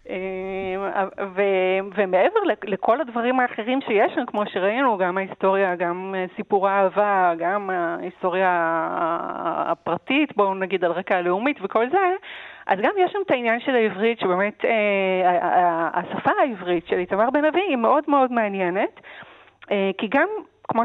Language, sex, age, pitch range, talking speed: Hebrew, female, 40-59, 185-255 Hz, 145 wpm